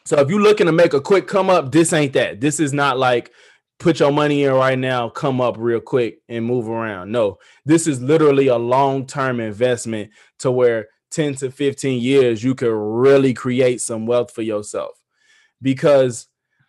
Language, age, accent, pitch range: English, 20-39, American, 125-150 Hz